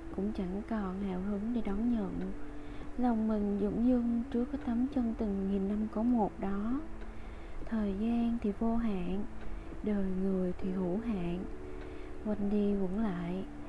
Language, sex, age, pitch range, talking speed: Vietnamese, female, 20-39, 185-225 Hz, 160 wpm